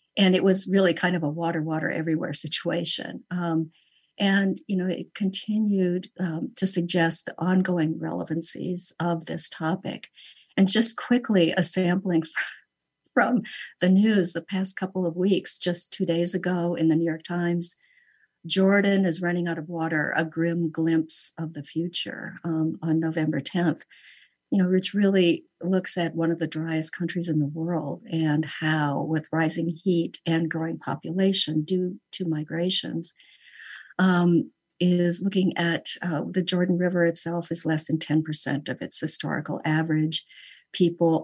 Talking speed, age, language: 155 wpm, 50-69, English